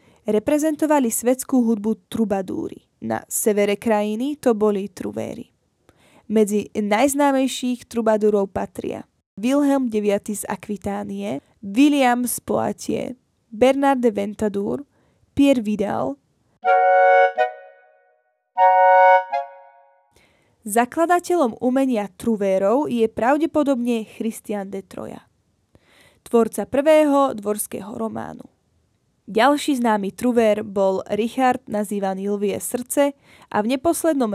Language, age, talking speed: Slovak, 20-39, 85 wpm